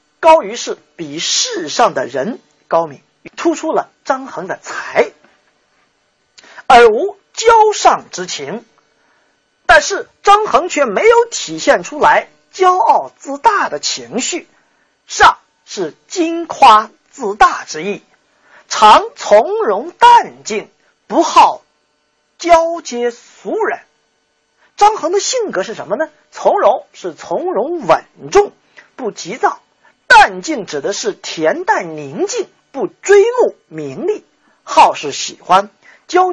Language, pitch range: Chinese, 270-410 Hz